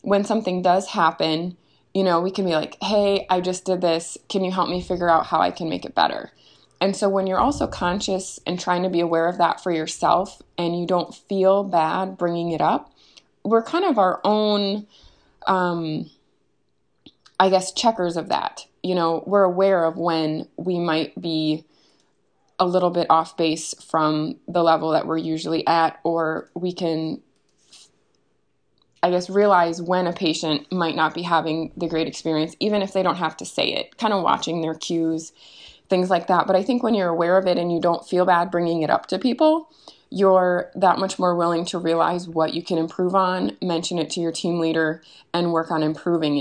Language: English